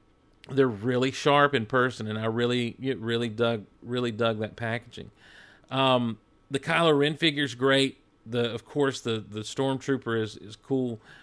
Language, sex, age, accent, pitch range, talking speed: English, male, 40-59, American, 115-140 Hz, 165 wpm